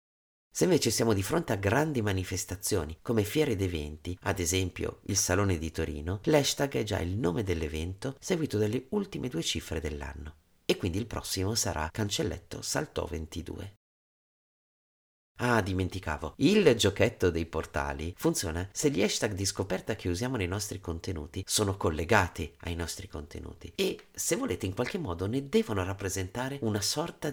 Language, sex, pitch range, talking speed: Italian, male, 80-115 Hz, 155 wpm